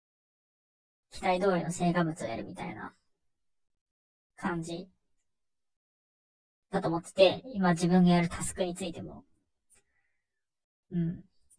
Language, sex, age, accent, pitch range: Japanese, male, 30-49, native, 170-195 Hz